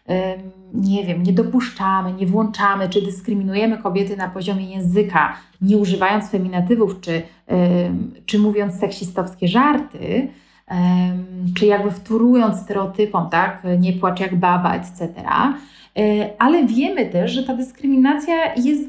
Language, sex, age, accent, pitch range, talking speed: Polish, female, 30-49, native, 190-260 Hz, 120 wpm